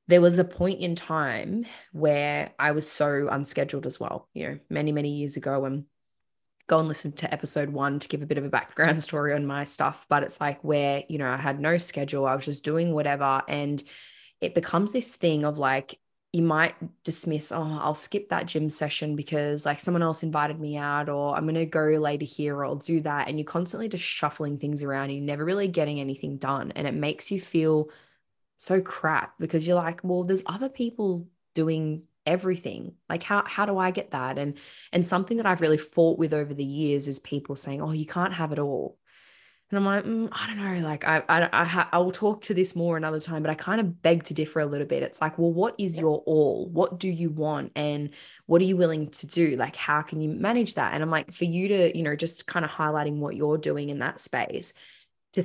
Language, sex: English, female